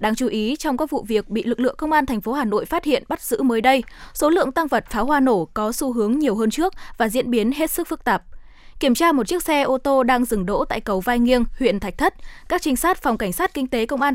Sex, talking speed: female, 295 wpm